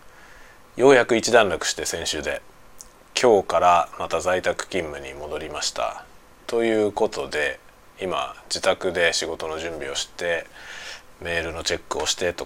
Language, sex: Japanese, male